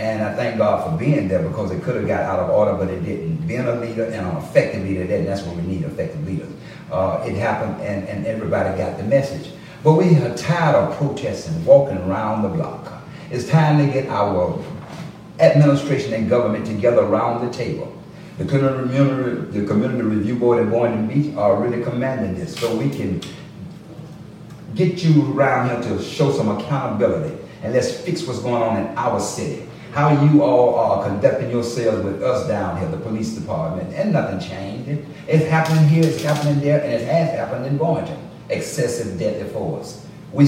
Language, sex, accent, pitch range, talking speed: English, male, American, 115-150 Hz, 185 wpm